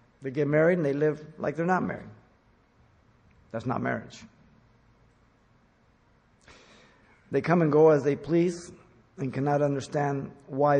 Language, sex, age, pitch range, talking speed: English, male, 50-69, 115-145 Hz, 135 wpm